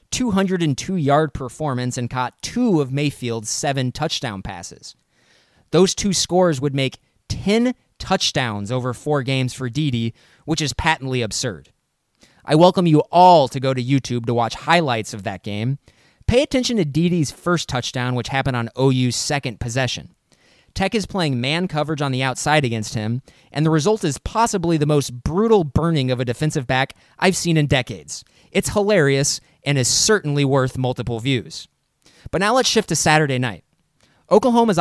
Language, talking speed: English, 165 wpm